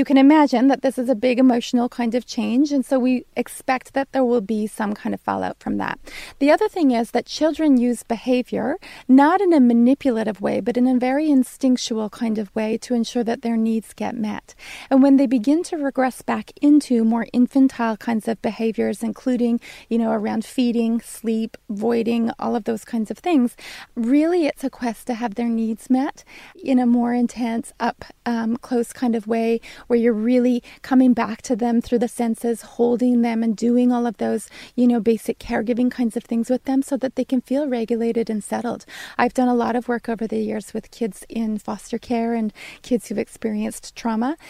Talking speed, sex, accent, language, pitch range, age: 205 wpm, female, American, English, 225-255 Hz, 30-49